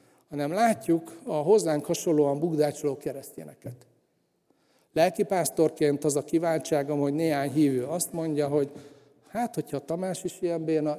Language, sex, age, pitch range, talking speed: Hungarian, male, 60-79, 145-170 Hz, 125 wpm